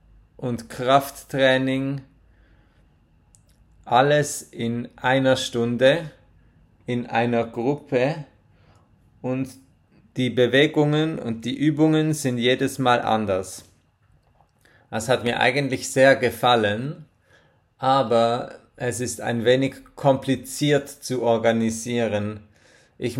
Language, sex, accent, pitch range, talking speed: German, male, German, 115-135 Hz, 90 wpm